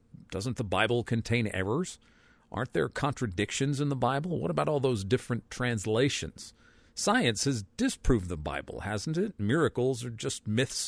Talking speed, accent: 155 wpm, American